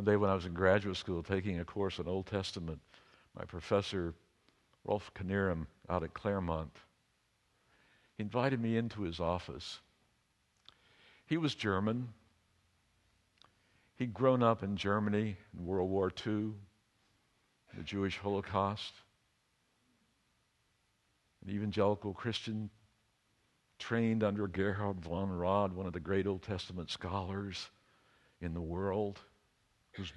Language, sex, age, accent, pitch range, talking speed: English, male, 60-79, American, 90-110 Hz, 120 wpm